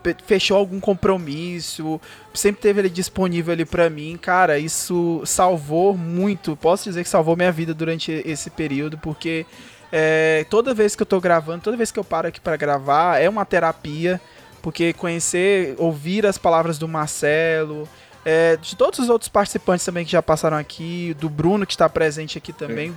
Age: 20-39